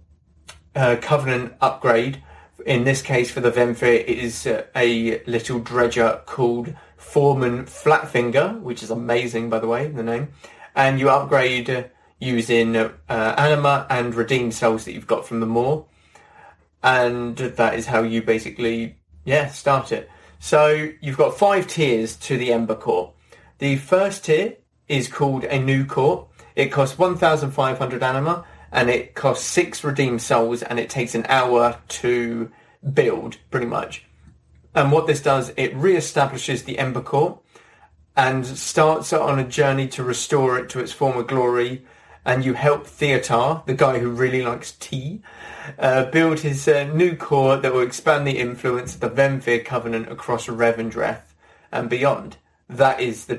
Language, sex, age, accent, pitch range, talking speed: English, male, 20-39, British, 120-140 Hz, 160 wpm